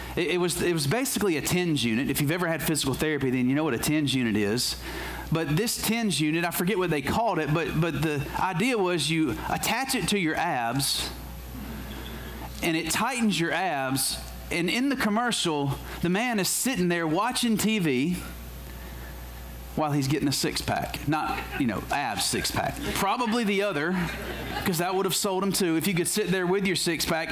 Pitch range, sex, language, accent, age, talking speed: 120-180 Hz, male, English, American, 30-49, 200 wpm